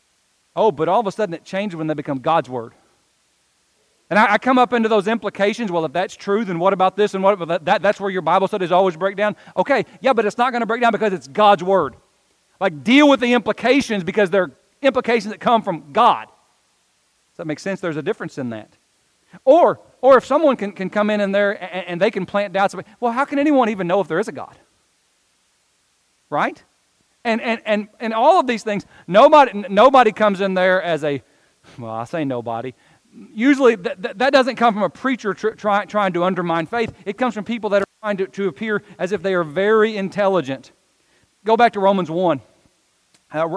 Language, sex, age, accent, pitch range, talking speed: English, male, 40-59, American, 175-220 Hz, 220 wpm